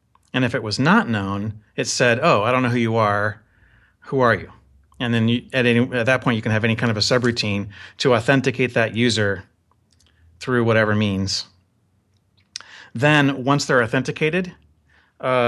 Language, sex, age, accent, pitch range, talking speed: English, male, 30-49, American, 100-130 Hz, 165 wpm